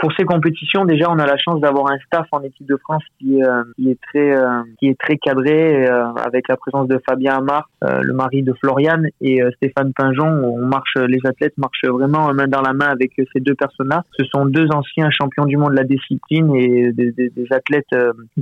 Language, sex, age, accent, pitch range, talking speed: French, male, 20-39, French, 125-145 Hz, 235 wpm